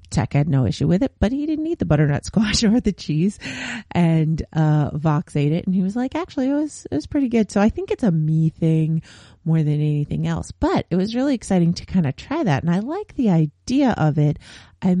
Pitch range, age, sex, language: 155-210 Hz, 30-49, female, English